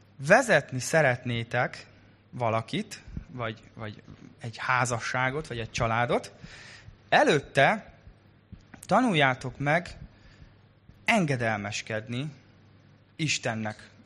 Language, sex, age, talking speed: Hungarian, male, 20-39, 65 wpm